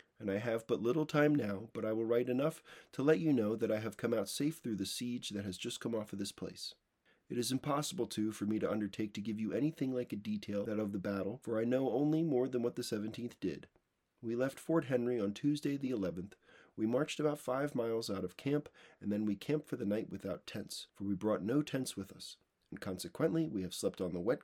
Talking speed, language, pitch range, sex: 250 wpm, English, 105-140 Hz, male